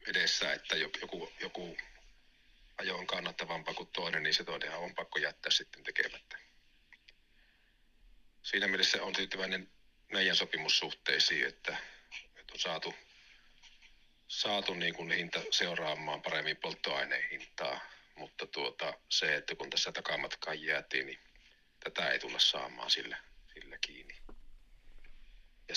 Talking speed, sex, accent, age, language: 110 wpm, male, native, 50-69, Finnish